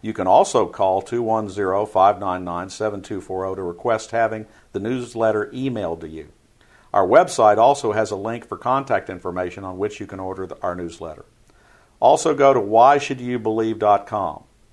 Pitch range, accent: 95-130 Hz, American